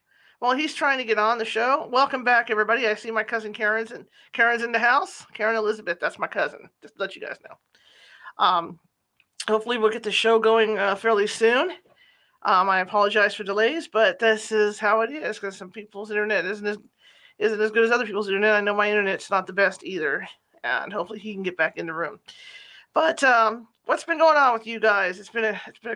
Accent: American